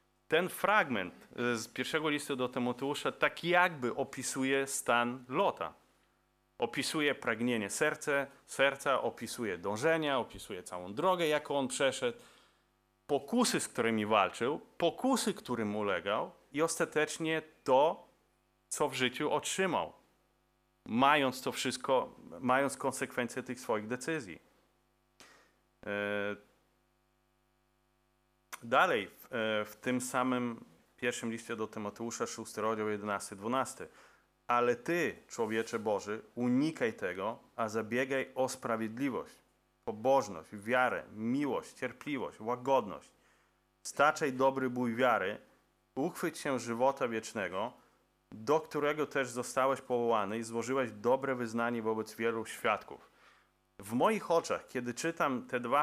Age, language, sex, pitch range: 30-49, Polish, male, 115-145 Hz